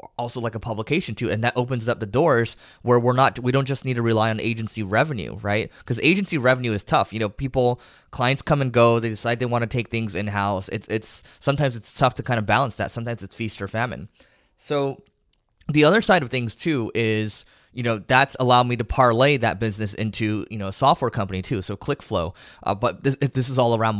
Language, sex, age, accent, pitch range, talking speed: English, male, 20-39, American, 110-130 Hz, 235 wpm